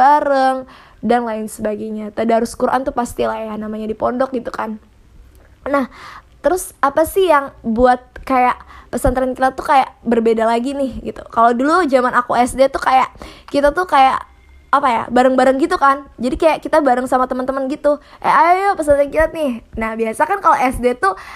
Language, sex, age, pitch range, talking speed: Indonesian, female, 20-39, 230-275 Hz, 175 wpm